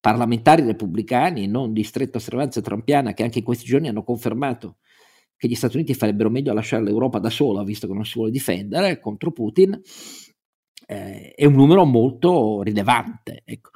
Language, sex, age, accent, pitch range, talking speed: Italian, male, 50-69, native, 105-125 Hz, 170 wpm